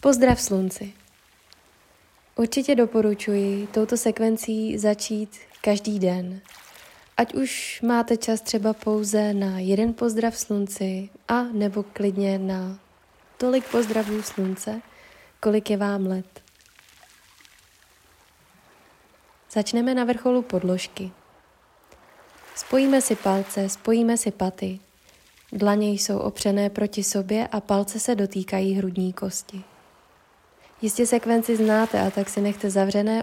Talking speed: 105 wpm